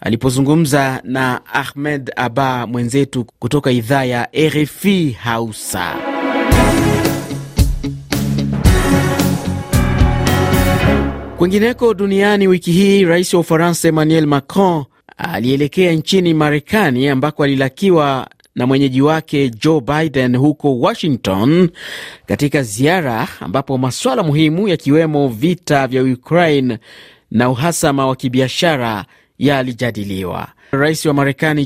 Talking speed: 95 wpm